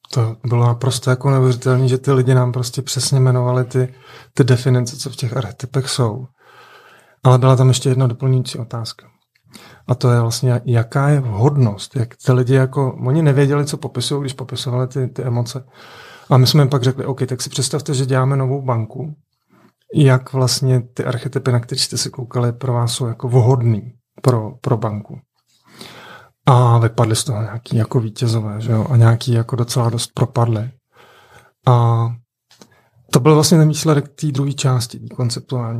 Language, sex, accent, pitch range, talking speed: Czech, male, native, 120-135 Hz, 175 wpm